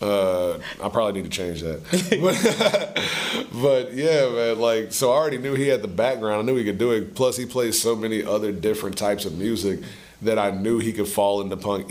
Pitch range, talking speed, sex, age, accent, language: 95-125 Hz, 215 wpm, male, 30-49, American, English